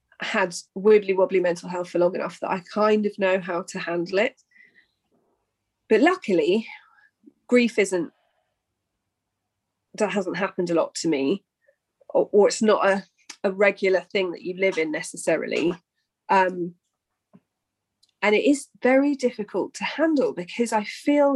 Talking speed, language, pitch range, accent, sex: 145 wpm, English, 185-240 Hz, British, female